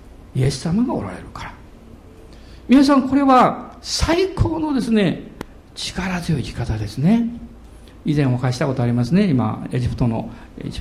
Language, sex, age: Japanese, male, 50-69